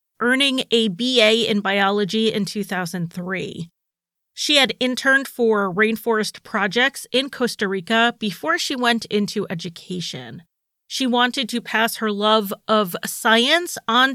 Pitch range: 195-250 Hz